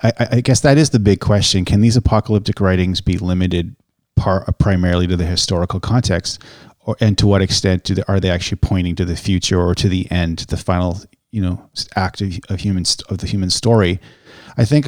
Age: 30-49